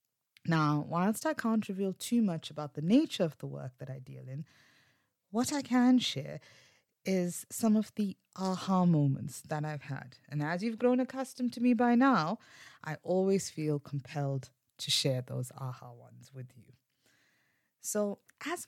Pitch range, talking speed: 145-210 Hz, 165 wpm